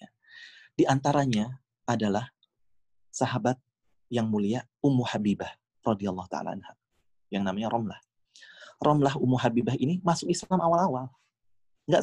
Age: 30-49